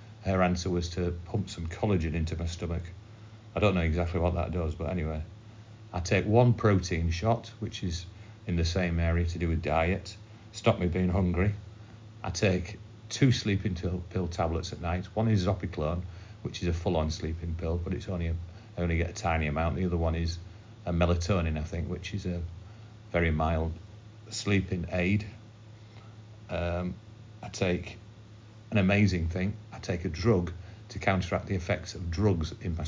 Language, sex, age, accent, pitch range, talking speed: English, male, 40-59, British, 90-110 Hz, 175 wpm